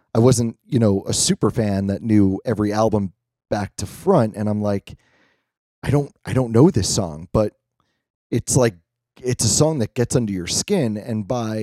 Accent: American